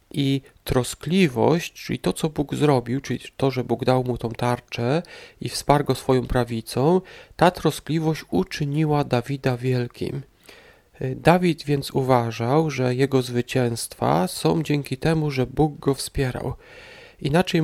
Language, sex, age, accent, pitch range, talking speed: Polish, male, 40-59, native, 130-160 Hz, 135 wpm